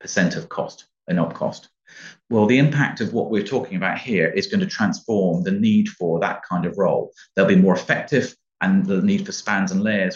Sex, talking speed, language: male, 220 wpm, English